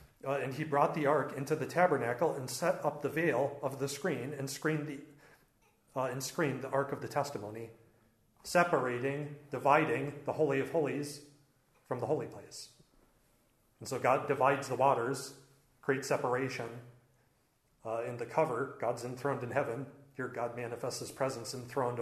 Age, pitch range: 40-59, 115-145 Hz